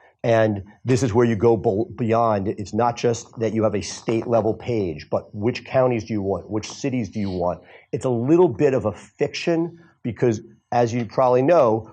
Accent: American